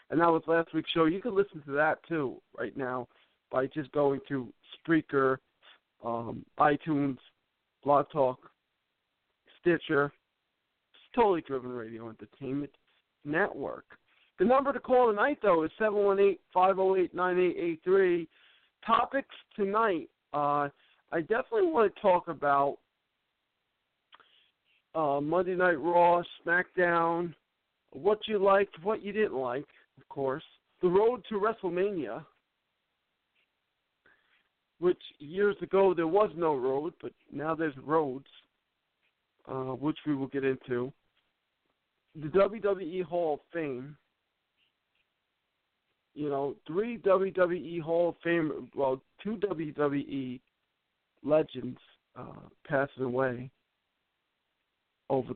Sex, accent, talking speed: male, American, 110 wpm